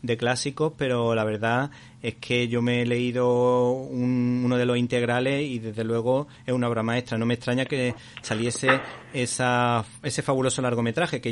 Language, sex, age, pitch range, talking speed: Spanish, male, 30-49, 115-130 Hz, 165 wpm